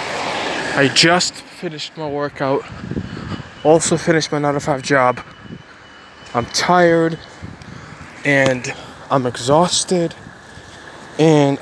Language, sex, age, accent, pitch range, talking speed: English, male, 20-39, American, 135-165 Hz, 95 wpm